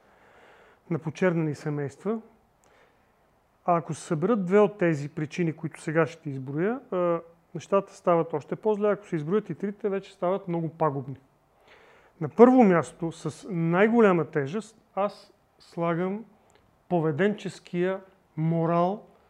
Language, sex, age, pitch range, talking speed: Bulgarian, male, 40-59, 155-200 Hz, 120 wpm